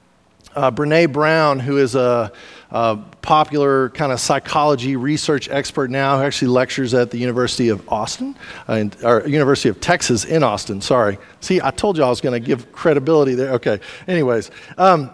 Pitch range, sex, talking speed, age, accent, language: 135-170 Hz, male, 175 wpm, 40-59, American, English